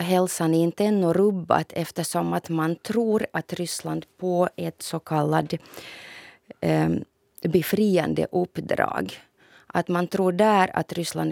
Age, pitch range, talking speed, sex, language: 30-49, 165-190 Hz, 120 wpm, female, Swedish